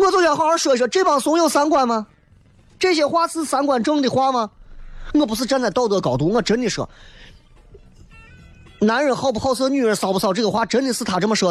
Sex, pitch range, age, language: male, 180-250 Hz, 30-49, Chinese